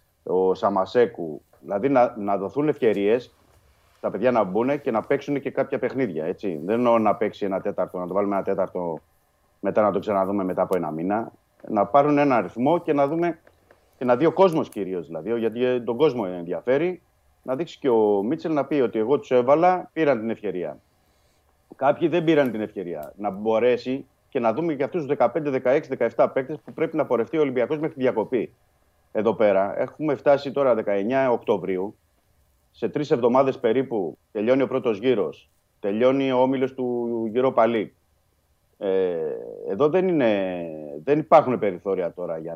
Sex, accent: male, native